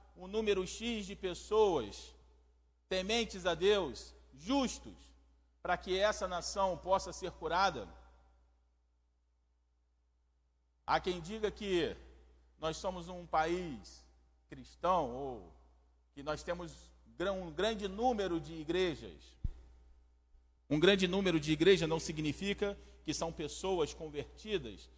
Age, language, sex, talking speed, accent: 40-59, Portuguese, male, 110 wpm, Brazilian